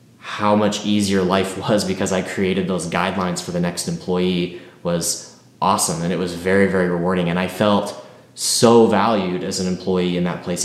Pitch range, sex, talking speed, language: 90-105 Hz, male, 185 wpm, English